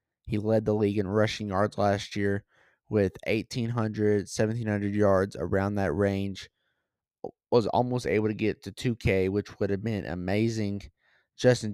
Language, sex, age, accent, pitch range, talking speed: English, male, 20-39, American, 100-125 Hz, 150 wpm